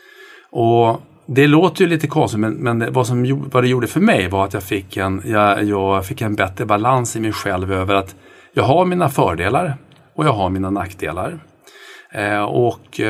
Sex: male